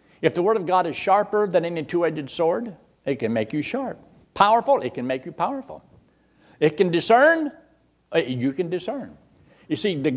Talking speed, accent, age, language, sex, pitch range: 185 wpm, American, 60-79, English, male, 140-195 Hz